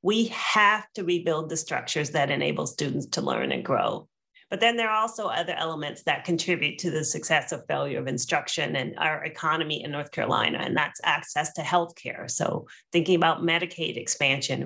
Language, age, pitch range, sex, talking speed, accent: English, 30-49, 155-185 Hz, female, 185 wpm, American